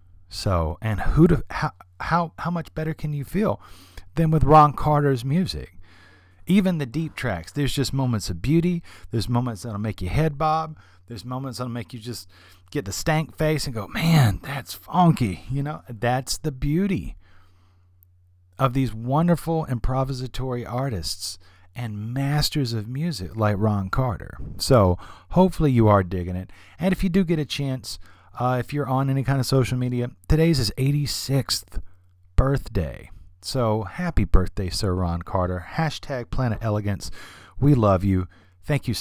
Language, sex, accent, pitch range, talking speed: English, male, American, 90-135 Hz, 160 wpm